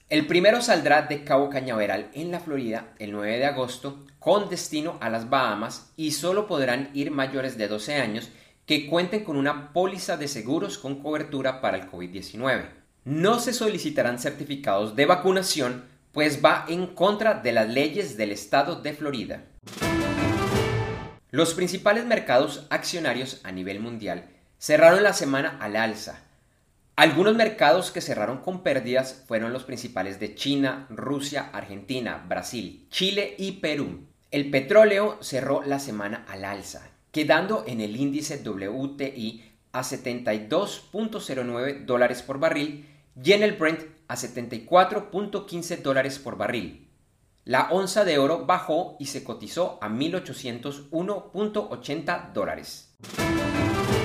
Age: 30-49